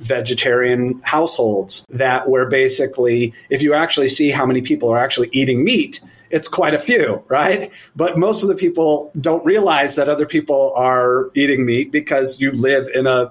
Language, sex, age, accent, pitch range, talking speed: English, male, 40-59, American, 125-150 Hz, 175 wpm